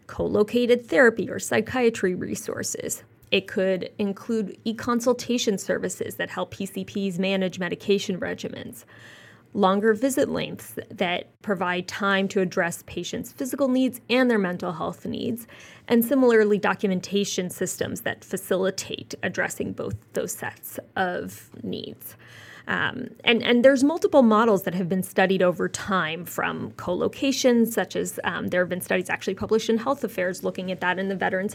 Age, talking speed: 20-39, 145 wpm